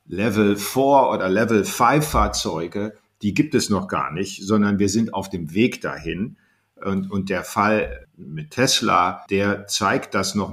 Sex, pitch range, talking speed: male, 100-120 Hz, 150 wpm